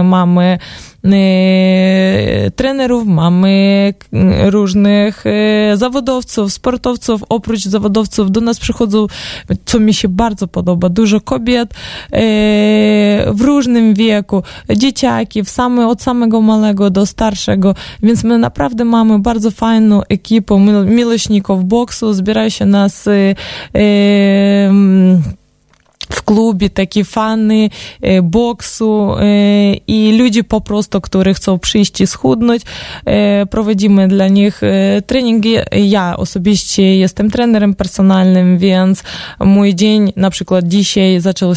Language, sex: Polish, female